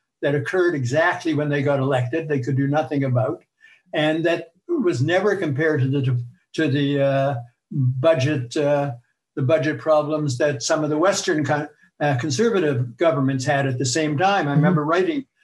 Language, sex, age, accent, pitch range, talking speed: English, male, 60-79, American, 140-170 Hz, 170 wpm